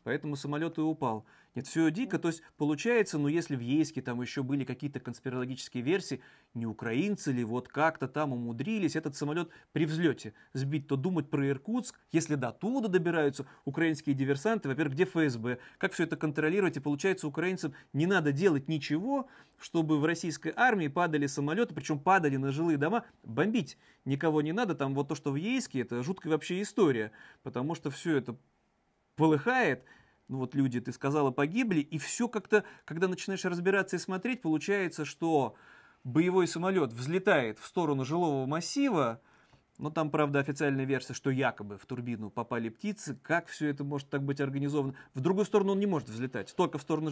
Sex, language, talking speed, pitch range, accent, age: male, Russian, 175 wpm, 140-175 Hz, native, 30-49